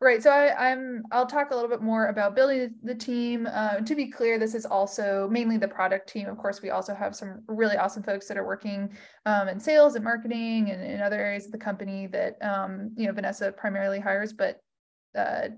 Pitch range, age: 205-255 Hz, 20-39